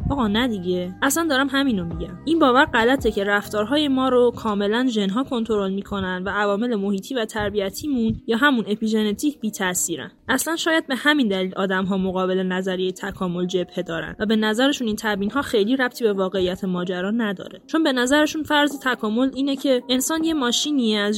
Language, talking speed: Persian, 180 wpm